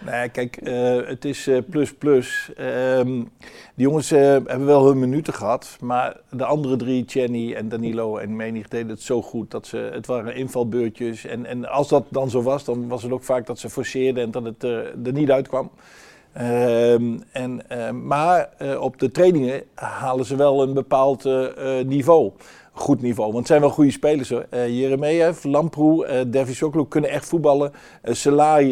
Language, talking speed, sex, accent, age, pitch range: Dutch, 195 wpm, male, Dutch, 50-69, 120-145 Hz